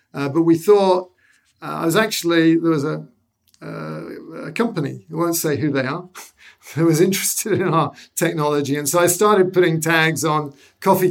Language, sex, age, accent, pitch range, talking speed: English, male, 50-69, British, 140-180 Hz, 185 wpm